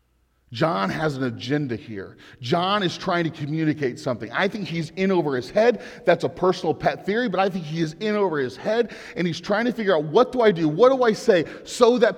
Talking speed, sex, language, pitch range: 235 wpm, male, English, 130-195 Hz